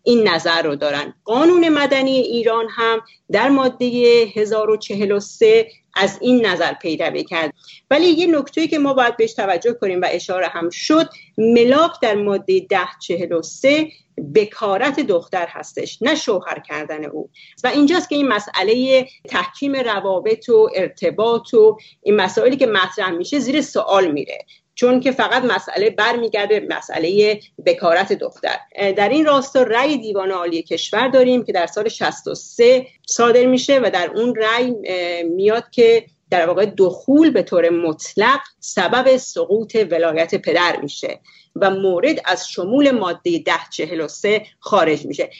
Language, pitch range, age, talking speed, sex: English, 190-280 Hz, 40-59, 140 wpm, female